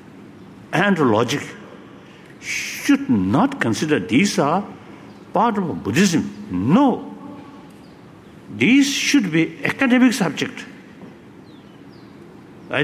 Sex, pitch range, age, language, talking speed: male, 165-260 Hz, 60-79, English, 80 wpm